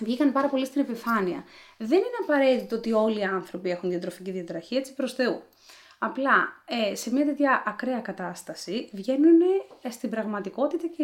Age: 20-39